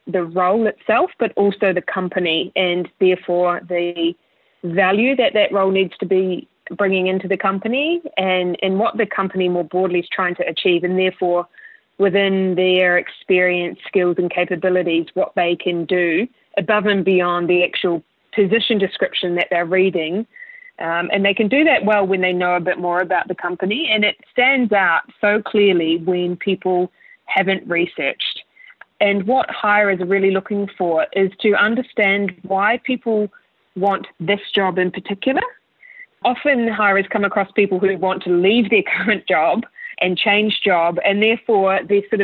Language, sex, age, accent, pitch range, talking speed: English, female, 20-39, Australian, 180-210 Hz, 165 wpm